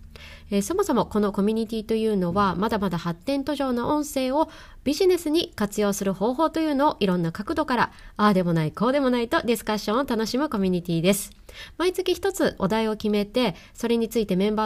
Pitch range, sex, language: 195-285 Hz, female, Japanese